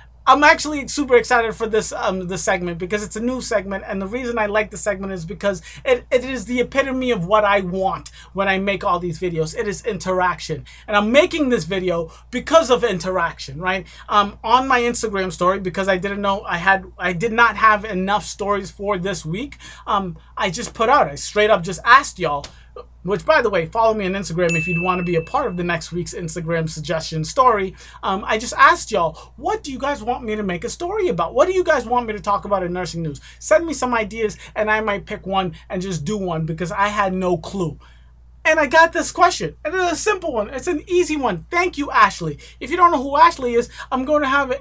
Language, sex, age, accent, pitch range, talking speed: English, male, 30-49, American, 185-260 Hz, 240 wpm